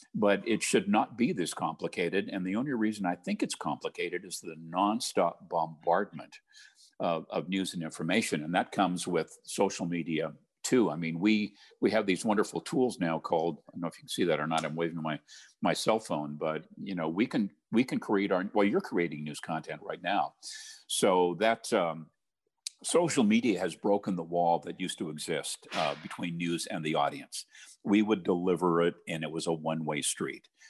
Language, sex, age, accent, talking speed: English, male, 50-69, American, 200 wpm